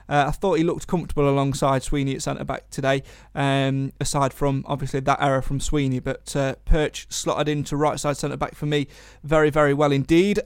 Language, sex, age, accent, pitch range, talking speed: English, male, 30-49, British, 150-190 Hz, 200 wpm